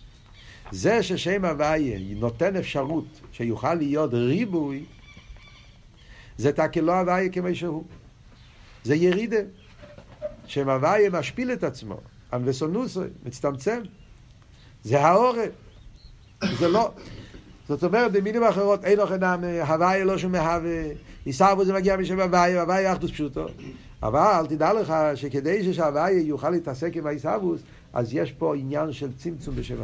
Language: Hebrew